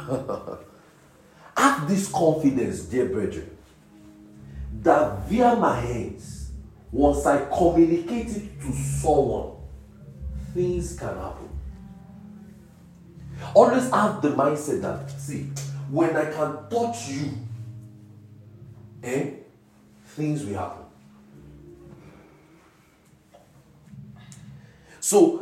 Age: 40-59